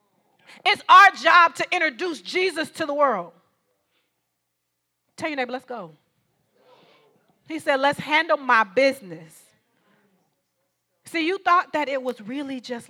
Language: English